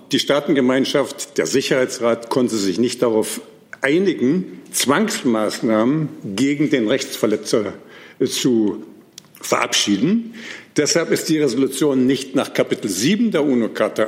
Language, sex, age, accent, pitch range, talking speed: German, male, 50-69, German, 135-205 Hz, 105 wpm